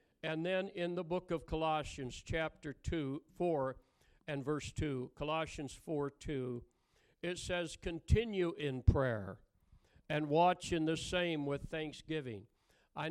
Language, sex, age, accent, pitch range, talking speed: English, male, 60-79, American, 140-170 Hz, 135 wpm